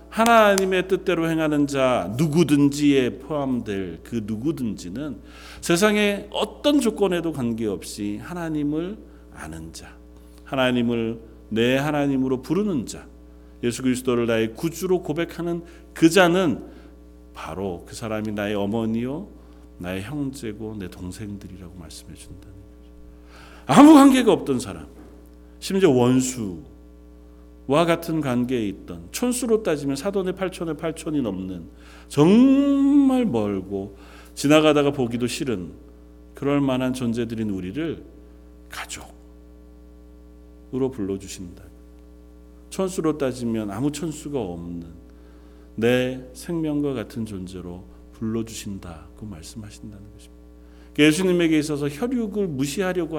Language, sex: Korean, male